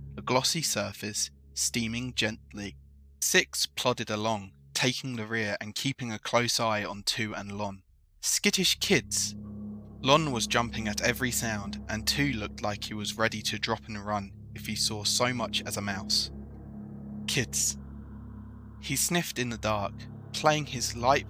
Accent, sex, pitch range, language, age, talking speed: British, male, 100-115 Hz, English, 20-39, 160 wpm